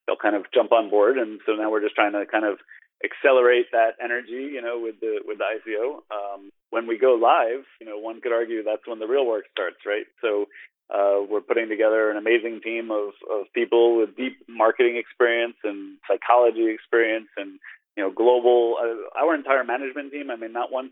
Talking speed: 210 wpm